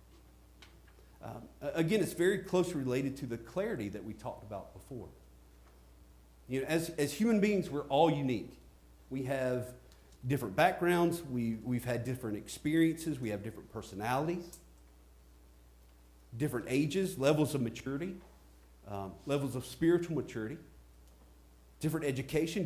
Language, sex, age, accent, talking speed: English, male, 40-59, American, 125 wpm